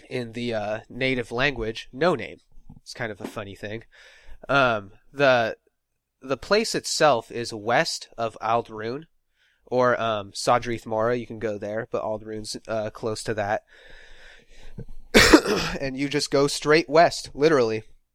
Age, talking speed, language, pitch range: 30-49, 140 wpm, English, 110-140 Hz